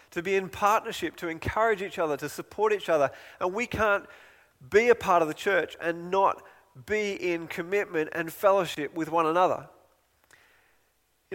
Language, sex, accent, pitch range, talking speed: English, male, Australian, 155-195 Hz, 170 wpm